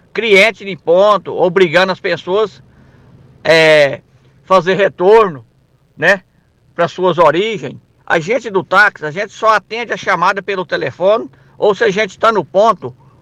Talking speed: 150 wpm